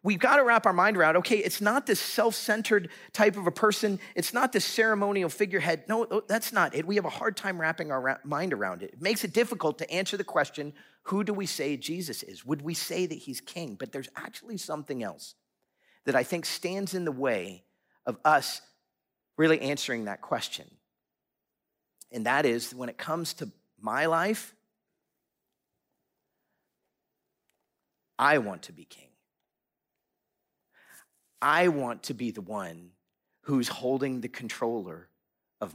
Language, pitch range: English, 145-210 Hz